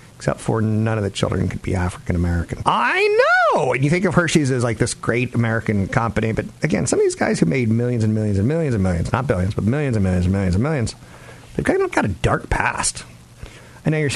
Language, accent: English, American